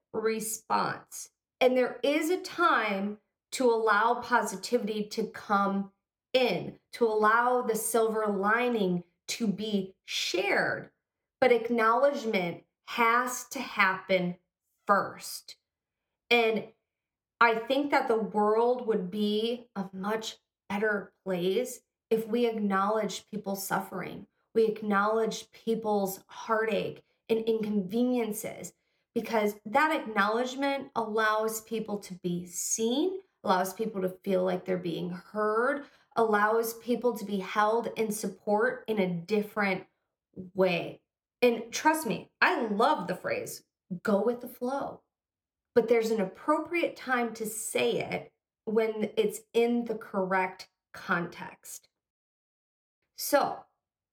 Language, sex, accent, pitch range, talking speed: English, female, American, 195-240 Hz, 115 wpm